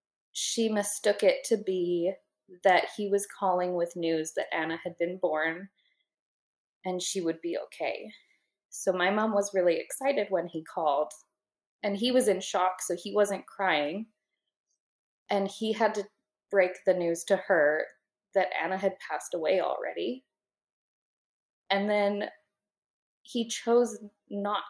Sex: female